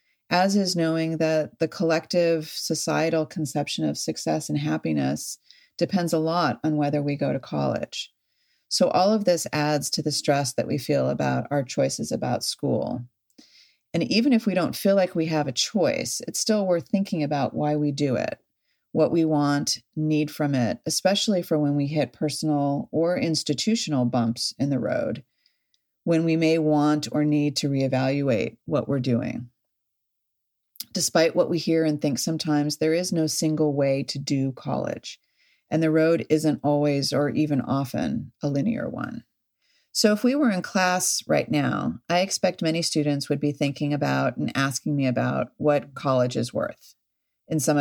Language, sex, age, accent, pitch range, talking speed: English, female, 40-59, American, 140-170 Hz, 175 wpm